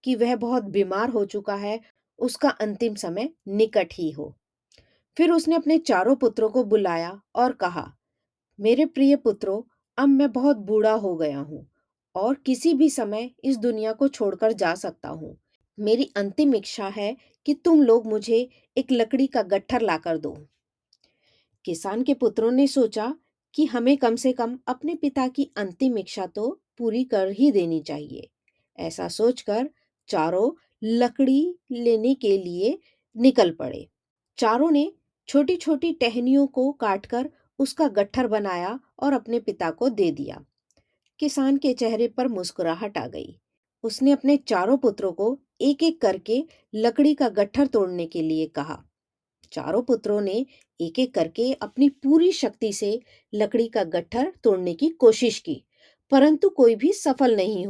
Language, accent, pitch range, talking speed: Hindi, native, 210-275 Hz, 125 wpm